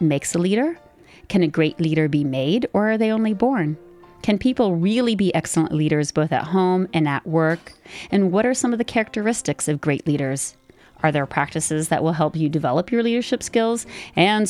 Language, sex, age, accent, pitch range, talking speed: English, female, 30-49, American, 150-190 Hz, 200 wpm